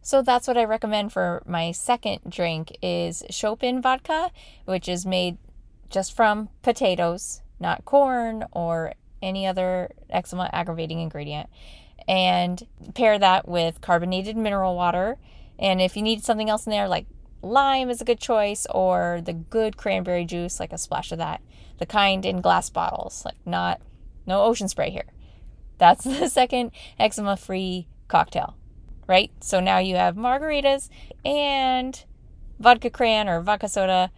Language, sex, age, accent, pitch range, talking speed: English, female, 20-39, American, 175-225 Hz, 150 wpm